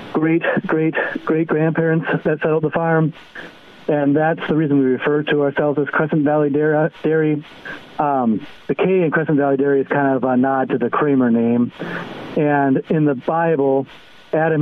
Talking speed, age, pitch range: 170 wpm, 40-59, 130-155 Hz